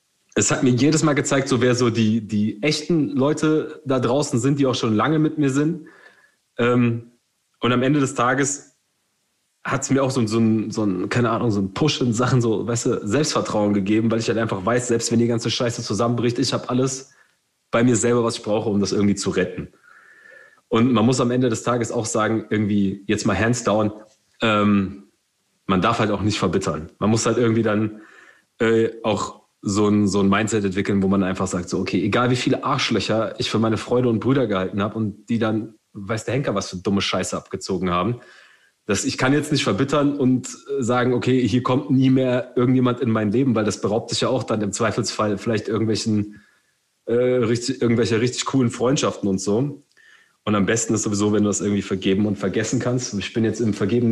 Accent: German